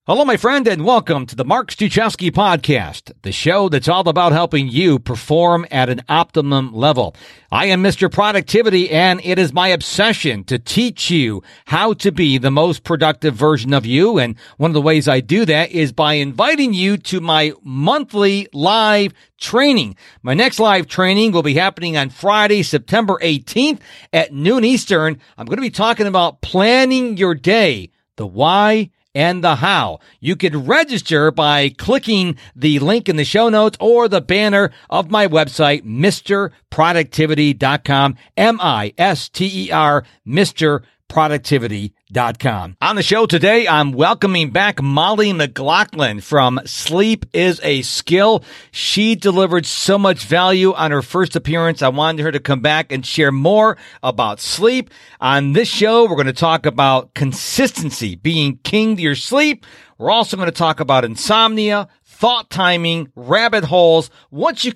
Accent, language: American, English